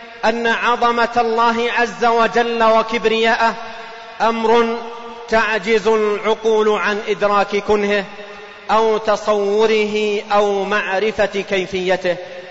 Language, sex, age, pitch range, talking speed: Arabic, male, 40-59, 205-235 Hz, 80 wpm